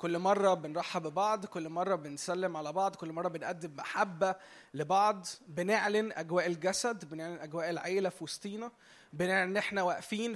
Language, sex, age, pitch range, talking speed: Arabic, male, 20-39, 160-205 Hz, 150 wpm